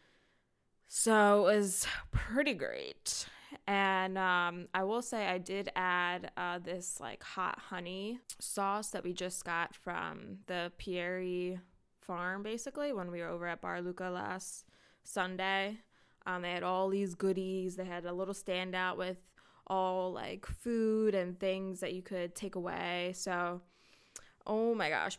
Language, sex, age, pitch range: English, female, 20-39, 180-210 Hz